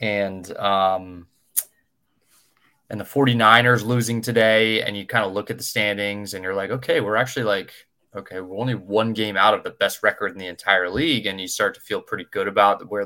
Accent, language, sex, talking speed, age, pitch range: American, English, male, 205 wpm, 20-39, 100-125 Hz